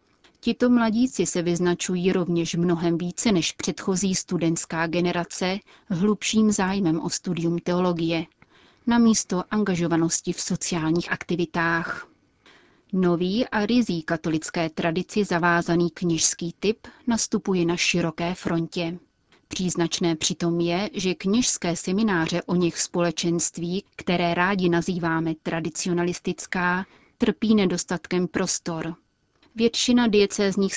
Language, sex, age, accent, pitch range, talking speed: Czech, female, 30-49, native, 170-195 Hz, 100 wpm